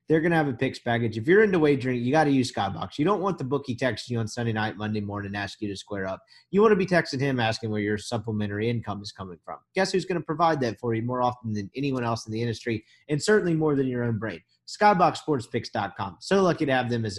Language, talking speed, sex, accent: English, 260 wpm, male, American